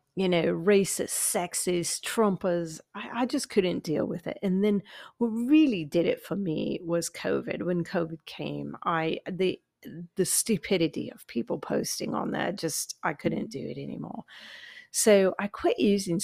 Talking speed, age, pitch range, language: 165 wpm, 40-59, 165-205 Hz, English